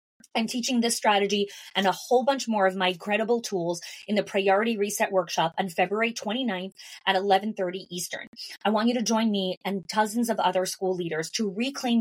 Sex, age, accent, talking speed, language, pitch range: female, 20-39, American, 190 wpm, English, 185-225 Hz